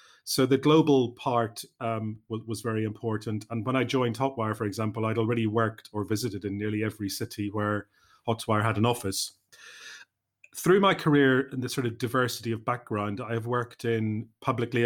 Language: English